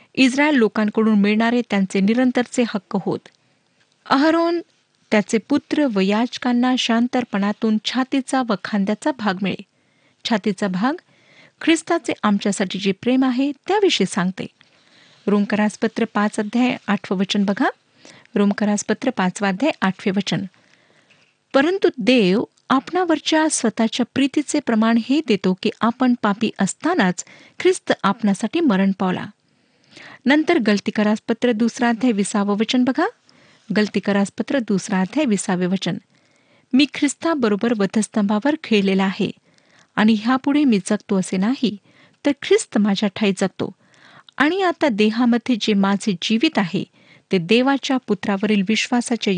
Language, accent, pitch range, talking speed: Marathi, native, 200-260 Hz, 115 wpm